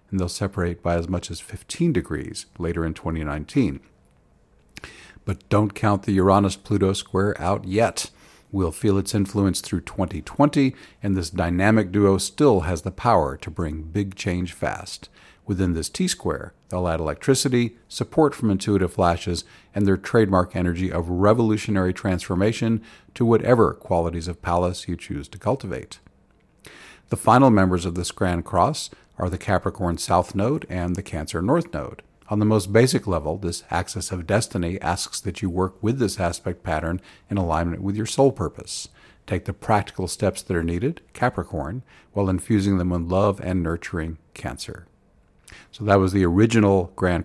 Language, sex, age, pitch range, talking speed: English, male, 50-69, 85-105 Hz, 160 wpm